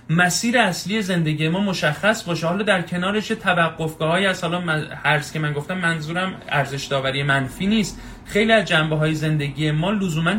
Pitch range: 125-175 Hz